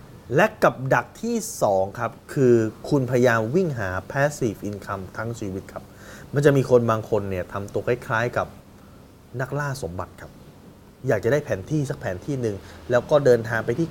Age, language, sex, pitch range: 20-39, Thai, male, 100-130 Hz